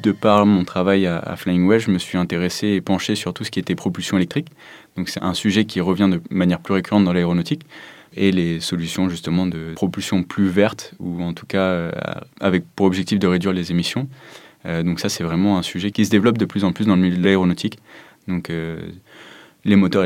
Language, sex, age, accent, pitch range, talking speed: French, male, 20-39, French, 85-100 Hz, 220 wpm